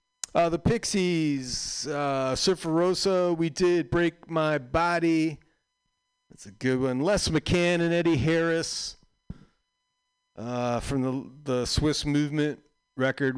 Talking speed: 115 wpm